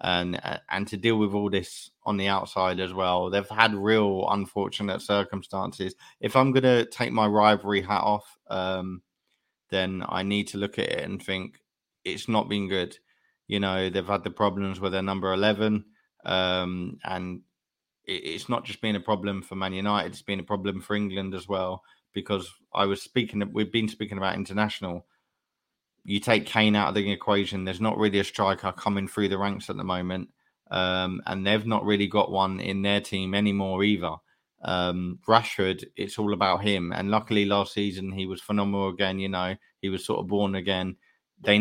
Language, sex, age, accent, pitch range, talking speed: English, male, 20-39, British, 95-105 Hz, 190 wpm